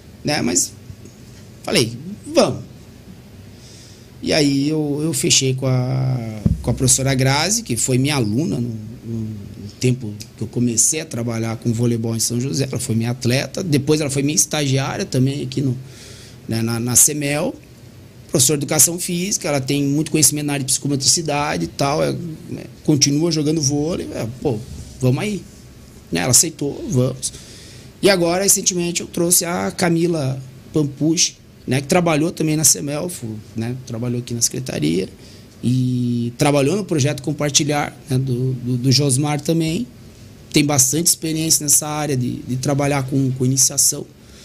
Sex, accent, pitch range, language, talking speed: male, Brazilian, 120-160 Hz, Portuguese, 155 wpm